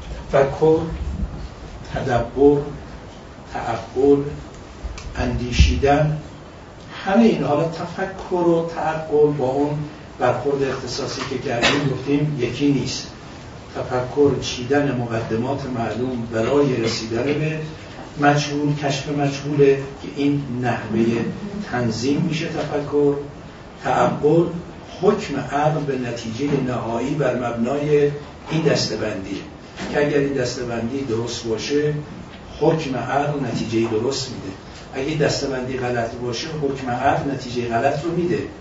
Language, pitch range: Persian, 120-150 Hz